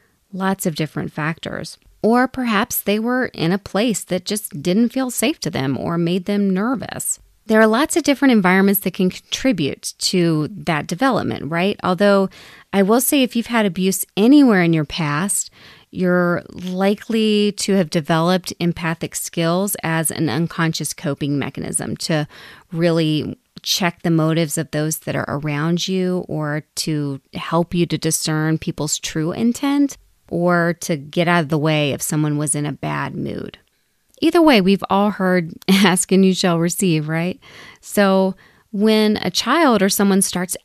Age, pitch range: 30-49, 160-200 Hz